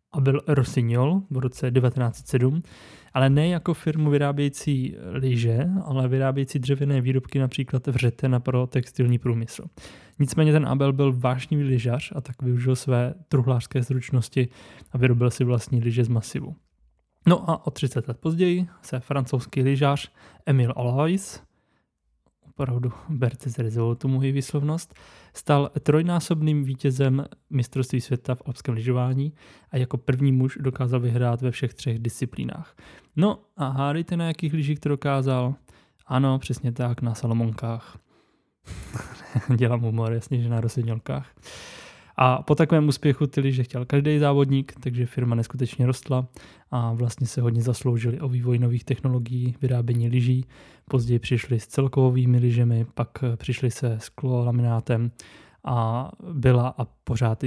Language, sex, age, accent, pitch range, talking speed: Czech, male, 20-39, native, 120-140 Hz, 140 wpm